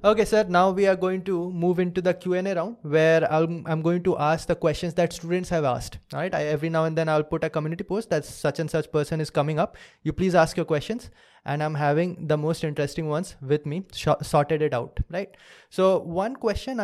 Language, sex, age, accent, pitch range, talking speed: English, male, 20-39, Indian, 155-195 Hz, 220 wpm